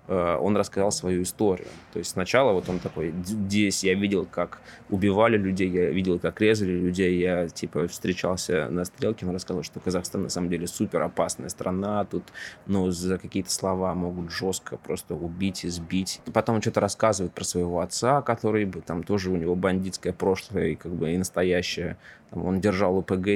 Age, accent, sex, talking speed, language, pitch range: 20-39, native, male, 175 wpm, Russian, 90-105 Hz